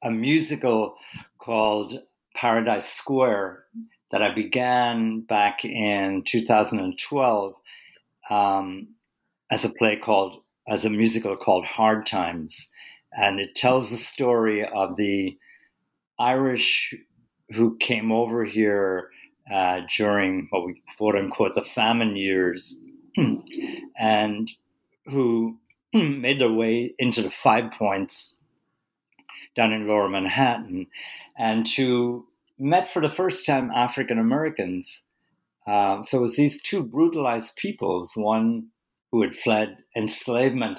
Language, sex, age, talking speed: English, male, 60-79, 110 wpm